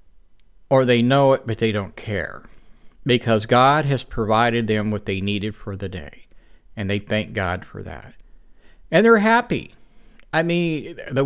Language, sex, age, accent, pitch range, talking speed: English, male, 50-69, American, 110-155 Hz, 165 wpm